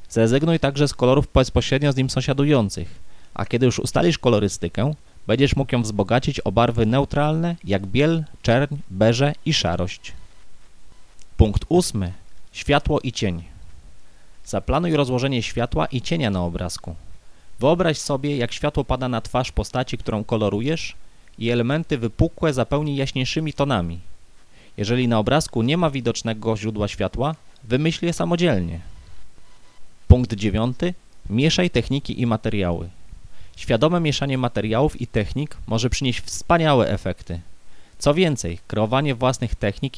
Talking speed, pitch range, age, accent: 130 wpm, 100-140 Hz, 30-49, native